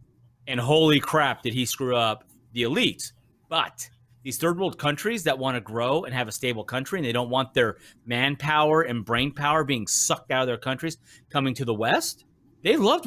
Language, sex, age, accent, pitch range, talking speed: English, male, 30-49, American, 125-175 Hz, 200 wpm